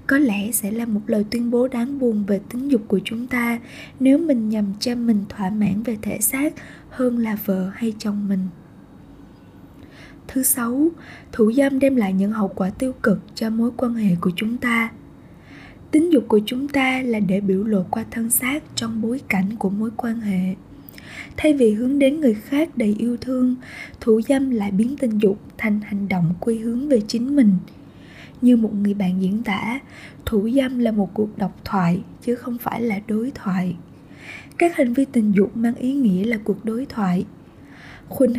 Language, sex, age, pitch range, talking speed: Vietnamese, female, 20-39, 205-250 Hz, 195 wpm